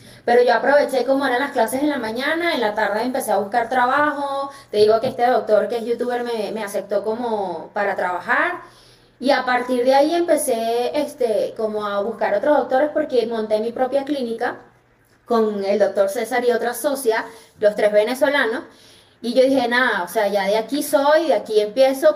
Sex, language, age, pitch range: female, Spanish, 20-39, 210-270 Hz